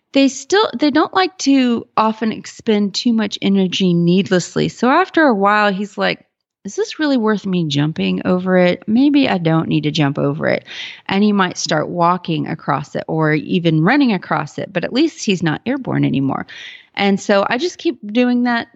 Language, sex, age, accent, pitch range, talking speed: English, female, 30-49, American, 170-220 Hz, 190 wpm